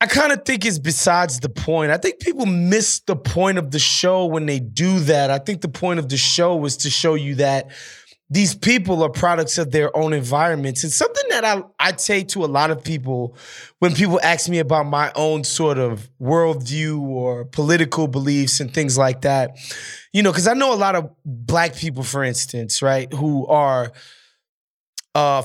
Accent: American